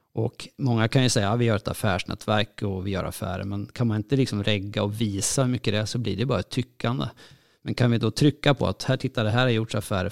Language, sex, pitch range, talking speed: English, male, 105-130 Hz, 260 wpm